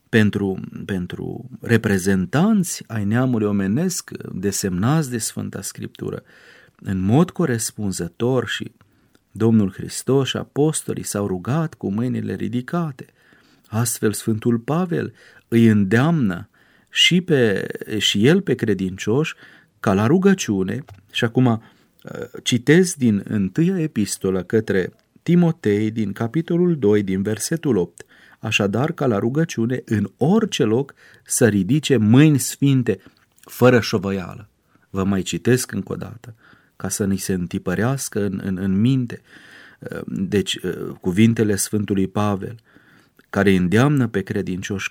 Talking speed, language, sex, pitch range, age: 115 wpm, Romanian, male, 100-135 Hz, 40-59